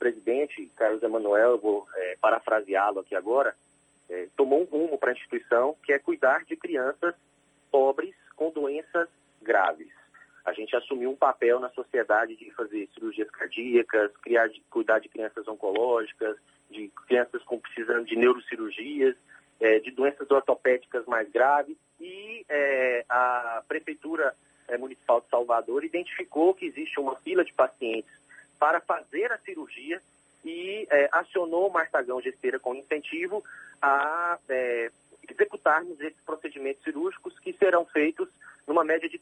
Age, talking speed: 30-49, 130 wpm